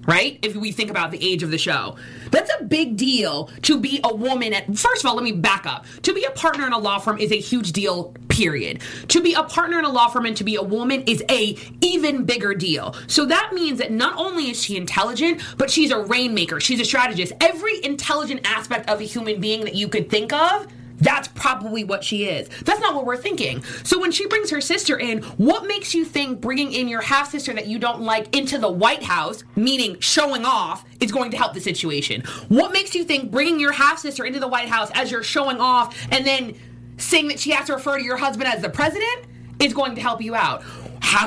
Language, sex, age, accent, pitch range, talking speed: English, female, 20-39, American, 220-315 Hz, 235 wpm